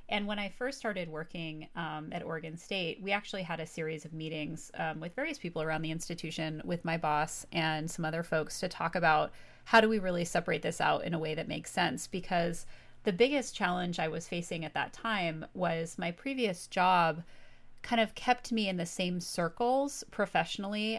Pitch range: 160-200 Hz